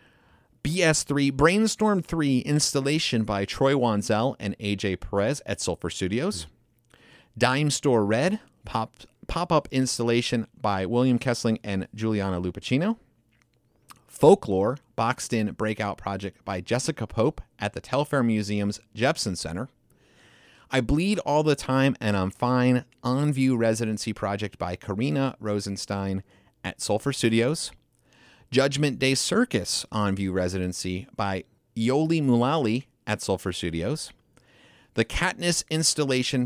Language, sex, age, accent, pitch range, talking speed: English, male, 30-49, American, 105-140 Hz, 115 wpm